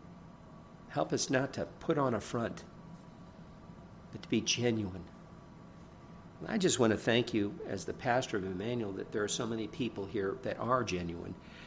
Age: 50-69